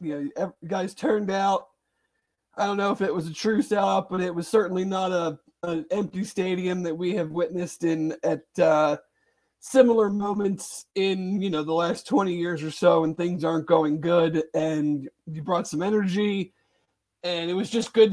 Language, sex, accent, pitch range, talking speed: English, male, American, 160-200 Hz, 185 wpm